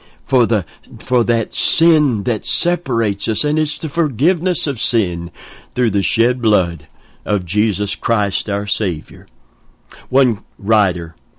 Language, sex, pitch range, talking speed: English, male, 105-135 Hz, 130 wpm